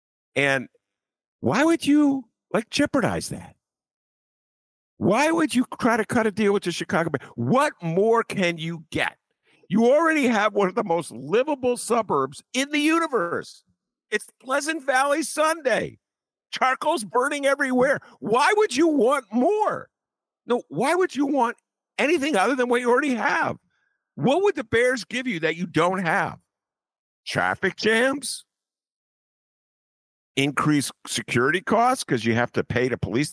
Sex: male